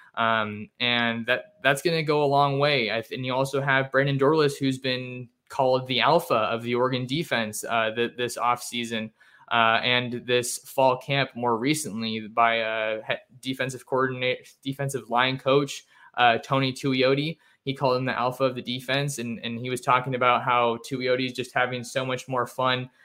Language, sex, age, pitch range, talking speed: English, male, 20-39, 125-140 Hz, 185 wpm